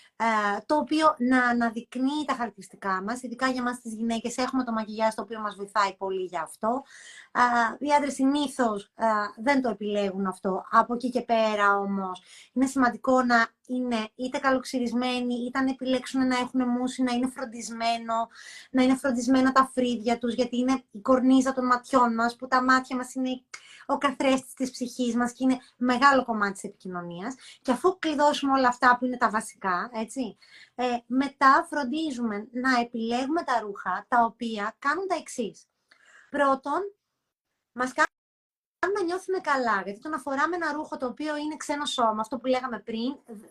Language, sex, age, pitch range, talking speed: Greek, female, 20-39, 230-275 Hz, 170 wpm